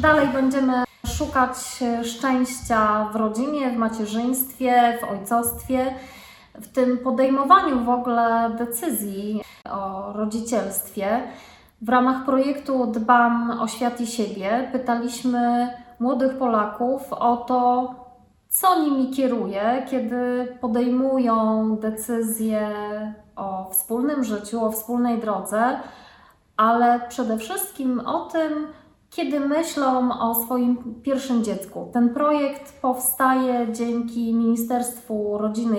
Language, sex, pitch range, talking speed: Polish, female, 220-260 Hz, 100 wpm